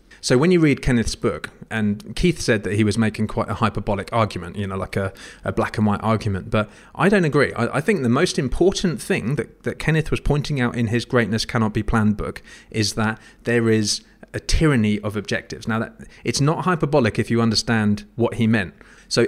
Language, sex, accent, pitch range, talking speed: English, male, British, 110-130 Hz, 220 wpm